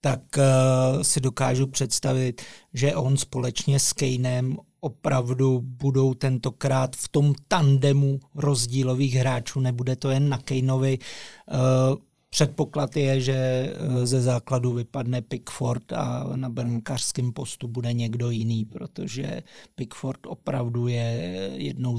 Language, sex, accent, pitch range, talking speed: Czech, male, native, 130-145 Hz, 110 wpm